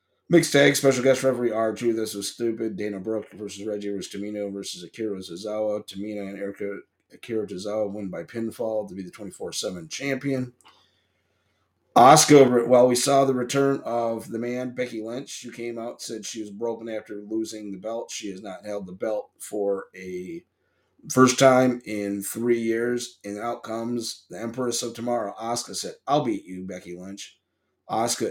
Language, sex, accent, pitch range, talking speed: English, male, American, 100-120 Hz, 175 wpm